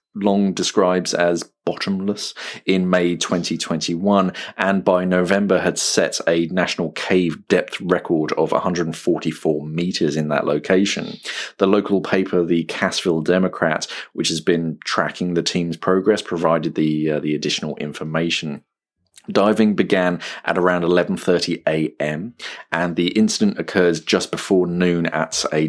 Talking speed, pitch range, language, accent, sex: 130 wpm, 80-95 Hz, English, British, male